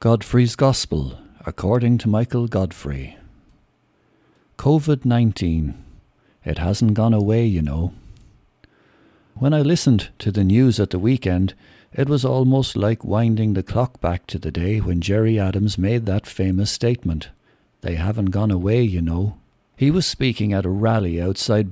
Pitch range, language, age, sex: 100-125 Hz, English, 60-79, male